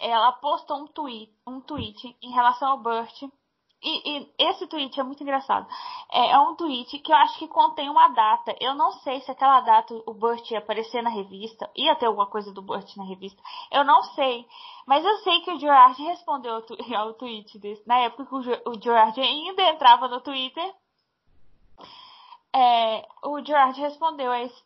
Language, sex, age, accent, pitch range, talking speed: Portuguese, female, 10-29, Brazilian, 225-310 Hz, 175 wpm